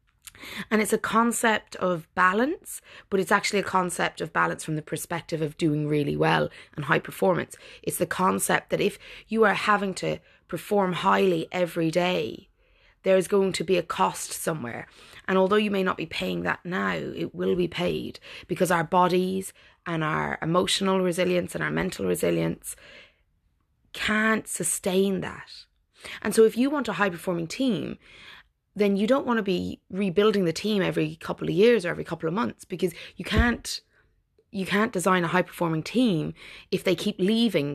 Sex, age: female, 20-39